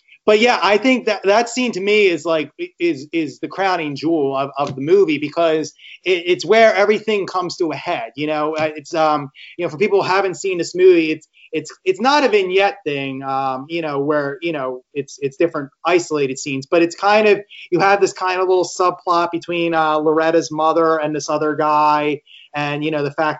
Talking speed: 215 wpm